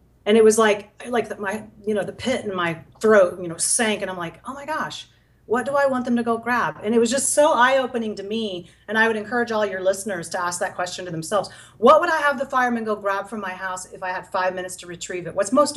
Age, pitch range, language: 40-59, 180-220 Hz, English